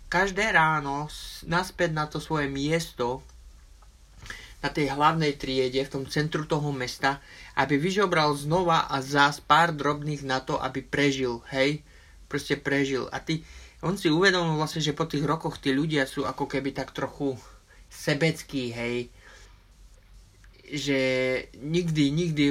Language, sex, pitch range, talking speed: Slovak, male, 130-160 Hz, 140 wpm